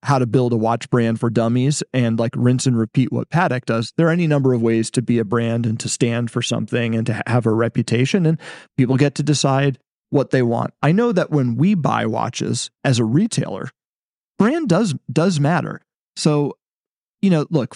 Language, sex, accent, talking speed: English, male, American, 210 wpm